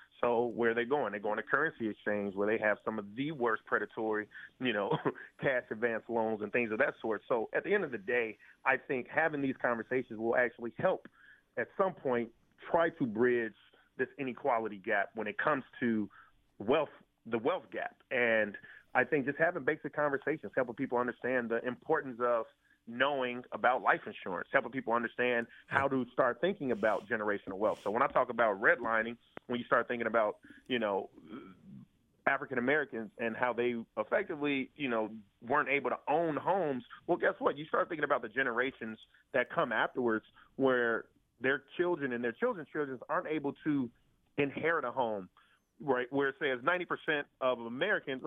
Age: 30-49